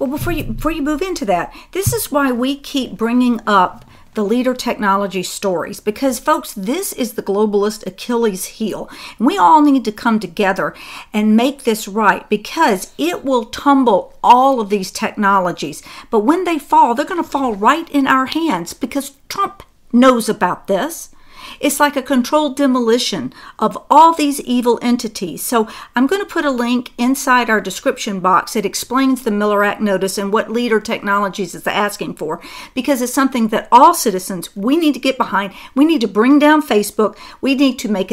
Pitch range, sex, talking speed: 210-285 Hz, female, 185 wpm